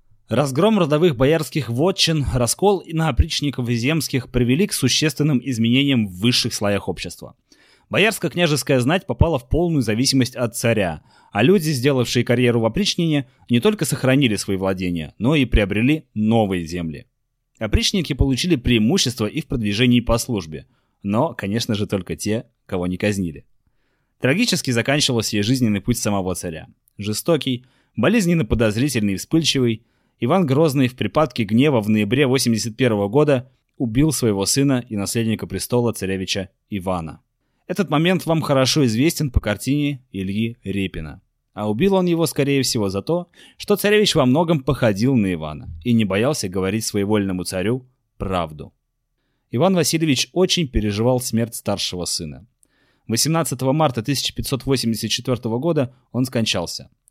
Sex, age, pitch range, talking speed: male, 20-39, 105-145 Hz, 140 wpm